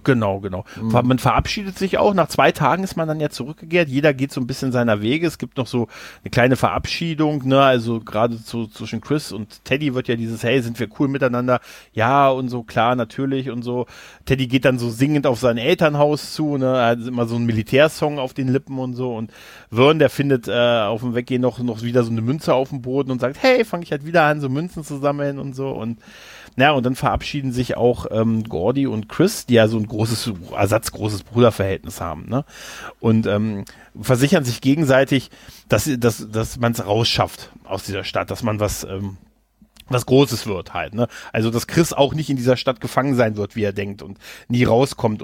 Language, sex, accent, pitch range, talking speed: German, male, German, 115-135 Hz, 220 wpm